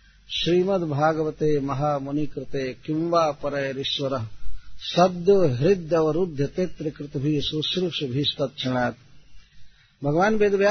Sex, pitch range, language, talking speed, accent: male, 140-185 Hz, Hindi, 85 wpm, native